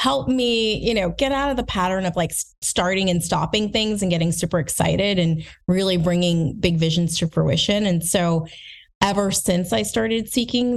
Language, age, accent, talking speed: English, 30-49, American, 185 wpm